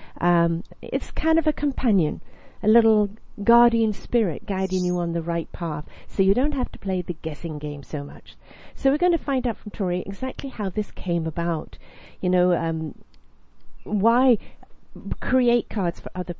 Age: 50-69